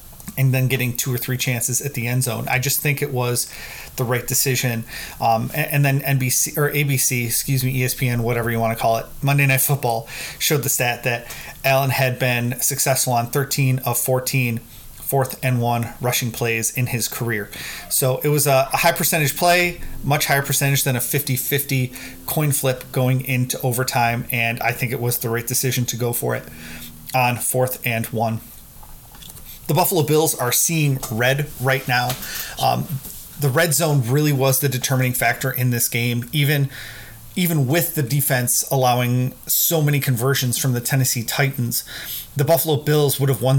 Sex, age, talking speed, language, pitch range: male, 30-49, 180 wpm, English, 120-140 Hz